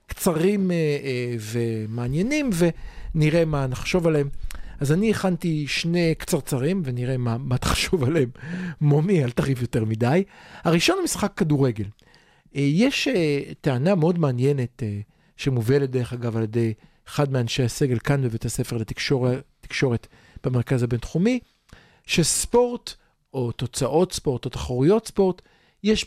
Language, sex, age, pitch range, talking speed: Hebrew, male, 50-69, 130-175 Hz, 125 wpm